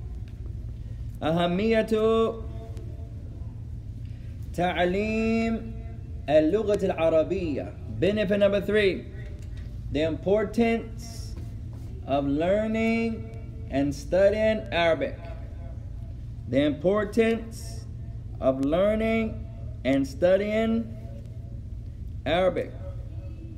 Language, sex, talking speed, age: English, male, 55 wpm, 30-49